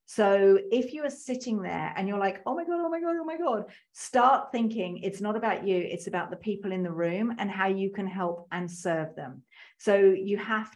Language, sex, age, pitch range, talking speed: English, female, 40-59, 185-235 Hz, 235 wpm